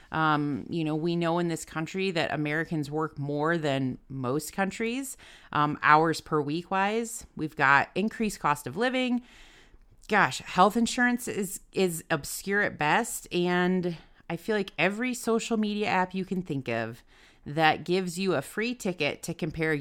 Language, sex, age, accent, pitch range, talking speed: English, female, 30-49, American, 145-200 Hz, 165 wpm